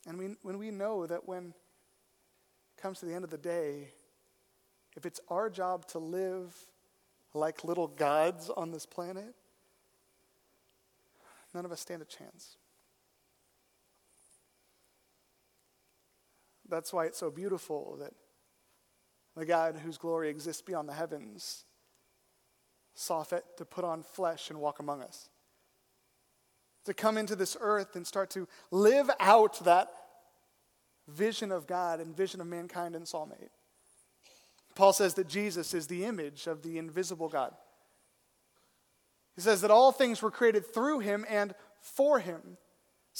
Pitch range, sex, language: 165-220 Hz, male, English